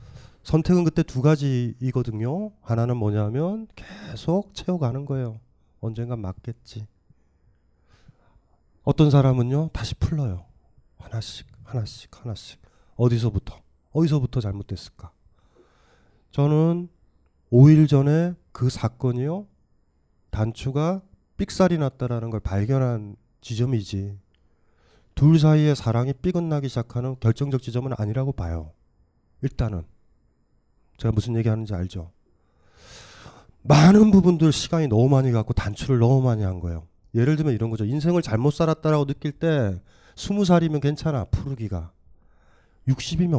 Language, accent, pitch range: Korean, native, 95-150 Hz